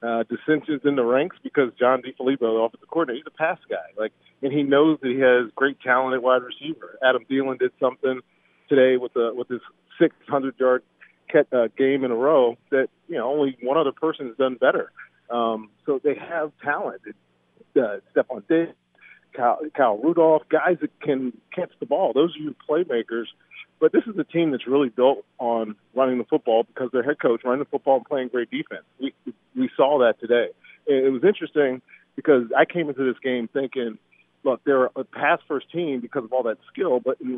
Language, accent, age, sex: English, American, 40-59, male